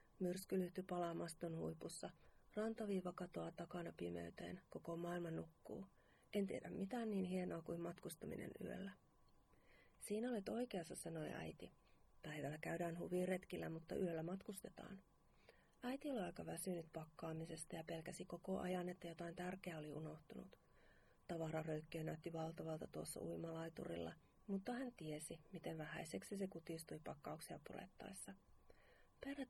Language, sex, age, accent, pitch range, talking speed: Finnish, female, 40-59, native, 160-195 Hz, 125 wpm